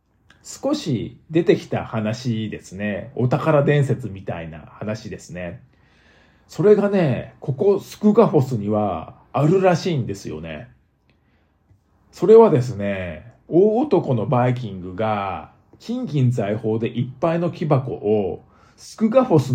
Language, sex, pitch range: Japanese, male, 110-165 Hz